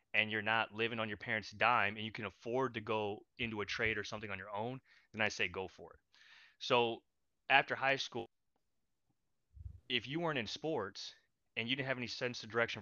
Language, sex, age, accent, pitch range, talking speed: English, male, 20-39, American, 105-125 Hz, 210 wpm